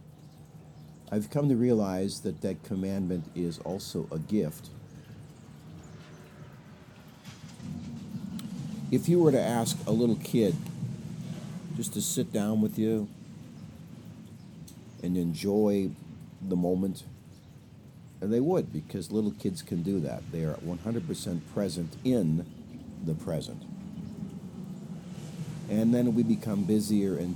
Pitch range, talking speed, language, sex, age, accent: 85-125 Hz, 110 wpm, English, male, 50-69, American